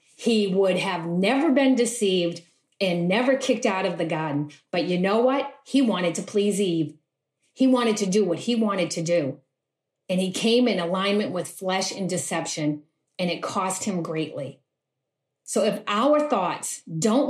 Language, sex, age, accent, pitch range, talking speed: English, female, 40-59, American, 175-245 Hz, 175 wpm